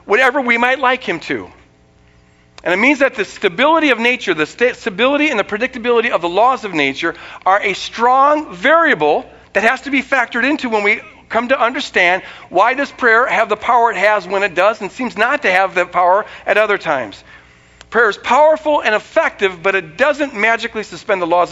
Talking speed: 200 wpm